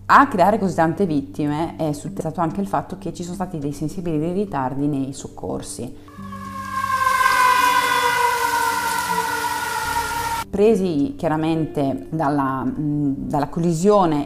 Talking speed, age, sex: 100 wpm, 30-49, female